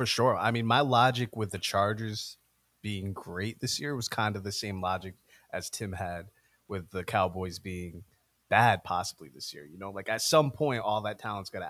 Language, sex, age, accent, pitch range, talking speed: English, male, 20-39, American, 95-120 Hz, 210 wpm